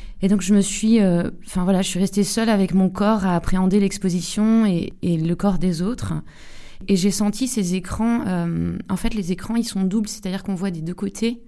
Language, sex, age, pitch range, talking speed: French, female, 20-39, 175-205 Hz, 225 wpm